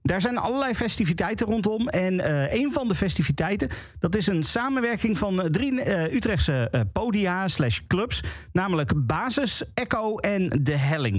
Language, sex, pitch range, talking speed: Dutch, male, 140-205 Hz, 145 wpm